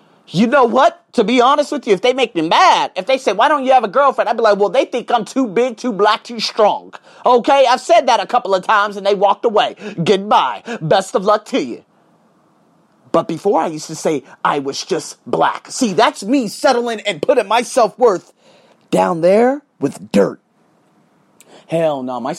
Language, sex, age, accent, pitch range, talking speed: English, male, 30-49, American, 160-220 Hz, 210 wpm